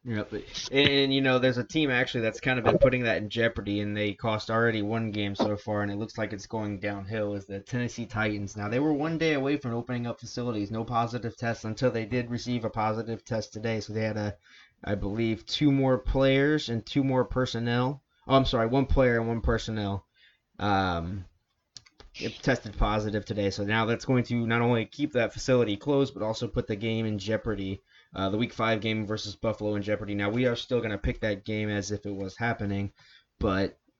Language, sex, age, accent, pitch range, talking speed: English, male, 20-39, American, 105-125 Hz, 220 wpm